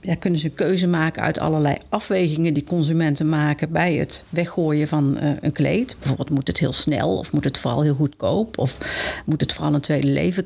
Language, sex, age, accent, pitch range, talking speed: Dutch, female, 50-69, Dutch, 155-190 Hz, 200 wpm